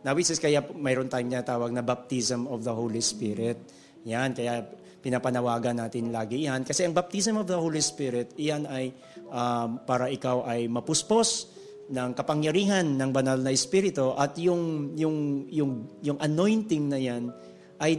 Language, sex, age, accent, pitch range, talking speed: Filipino, male, 40-59, native, 130-170 Hz, 160 wpm